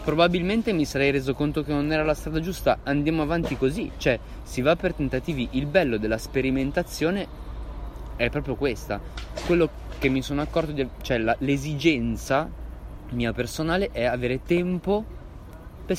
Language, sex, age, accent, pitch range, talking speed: Italian, male, 20-39, native, 105-155 Hz, 145 wpm